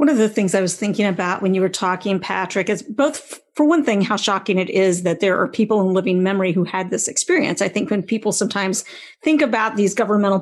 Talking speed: 250 wpm